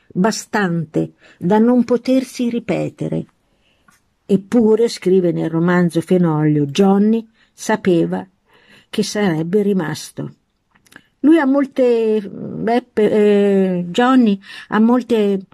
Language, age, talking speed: Italian, 50-69, 85 wpm